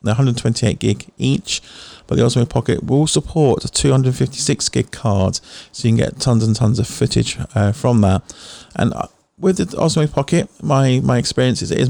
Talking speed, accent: 180 wpm, British